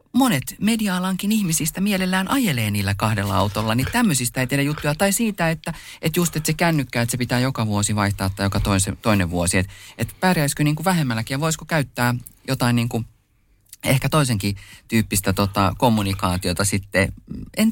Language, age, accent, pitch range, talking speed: Finnish, 30-49, native, 105-165 Hz, 165 wpm